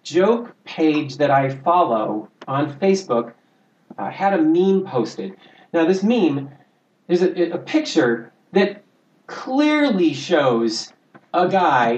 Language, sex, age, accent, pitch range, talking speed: English, male, 40-59, American, 140-200 Hz, 120 wpm